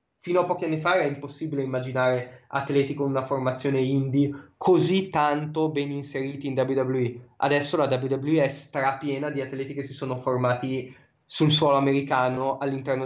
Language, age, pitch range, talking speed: Italian, 20-39, 135-155 Hz, 155 wpm